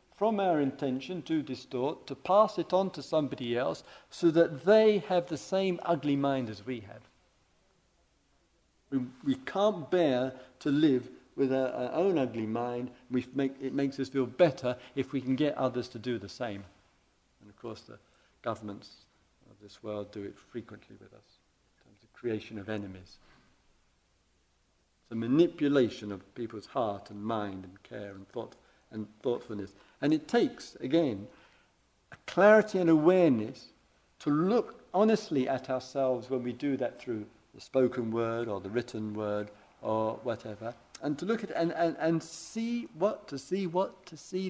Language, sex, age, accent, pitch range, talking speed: English, male, 50-69, British, 110-170 Hz, 170 wpm